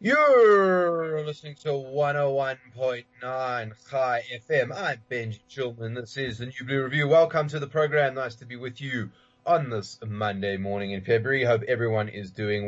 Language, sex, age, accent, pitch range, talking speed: English, male, 20-39, Australian, 110-150 Hz, 160 wpm